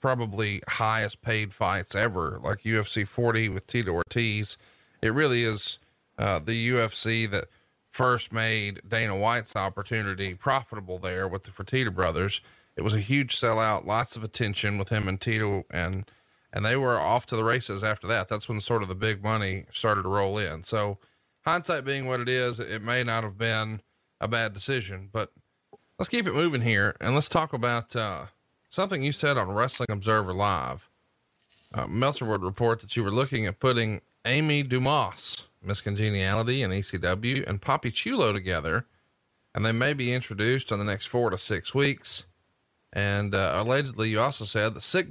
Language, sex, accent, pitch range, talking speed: English, male, American, 100-125 Hz, 180 wpm